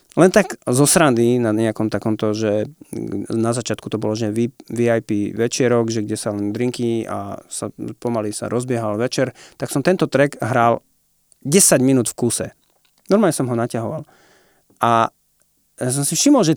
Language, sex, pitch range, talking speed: Slovak, male, 115-145 Hz, 165 wpm